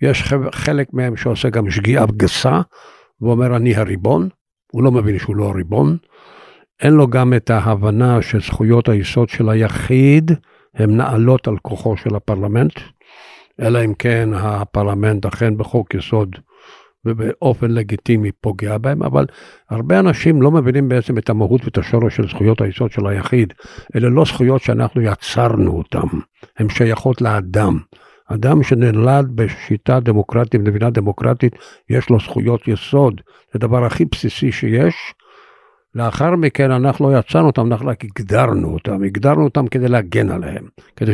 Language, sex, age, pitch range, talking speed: Hebrew, male, 60-79, 110-130 Hz, 140 wpm